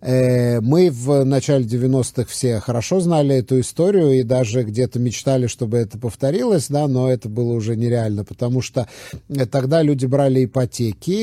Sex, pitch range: male, 120-140 Hz